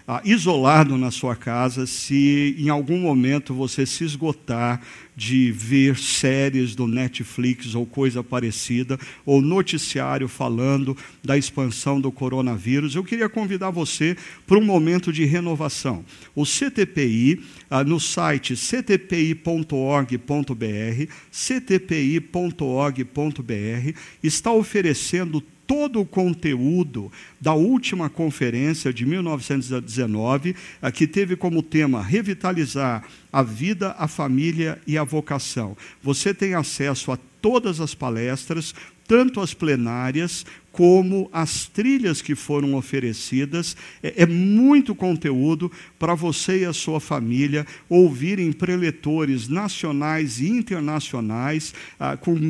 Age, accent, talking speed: 50-69, Brazilian, 110 wpm